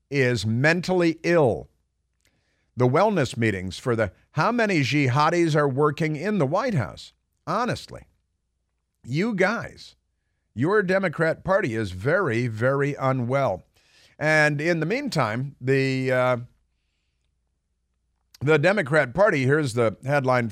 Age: 50-69